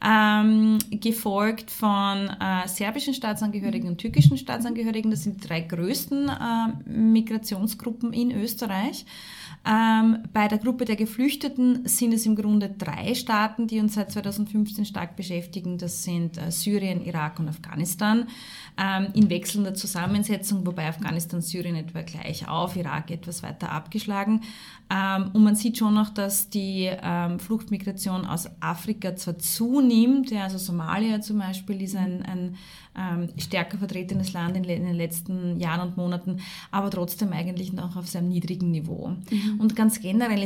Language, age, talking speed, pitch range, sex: German, 30-49, 145 wpm, 175-215 Hz, female